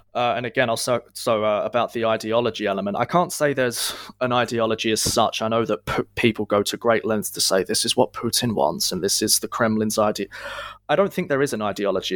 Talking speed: 220 wpm